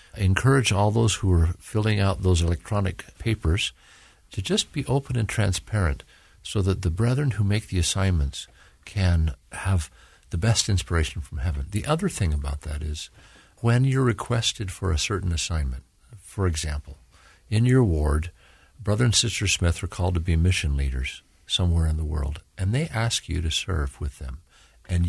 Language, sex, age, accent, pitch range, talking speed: English, male, 50-69, American, 80-110 Hz, 175 wpm